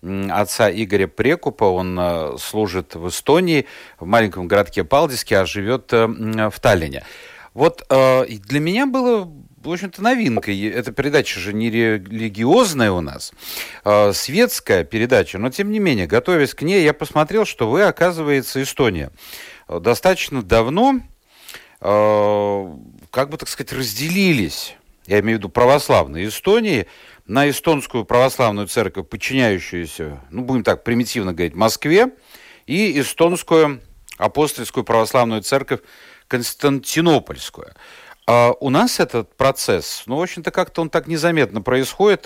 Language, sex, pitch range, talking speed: Russian, male, 110-150 Hz, 125 wpm